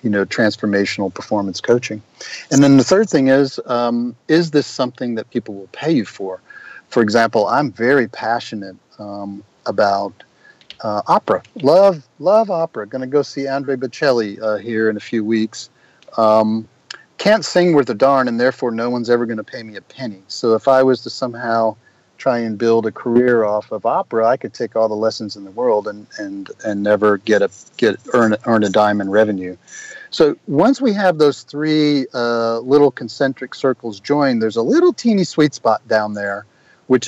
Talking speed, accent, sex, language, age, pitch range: 190 wpm, American, male, English, 40-59, 105-135 Hz